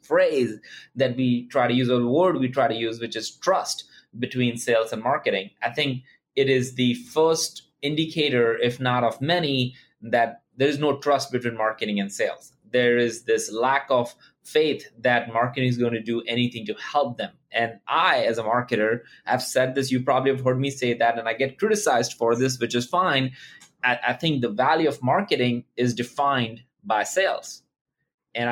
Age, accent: 20-39, Indian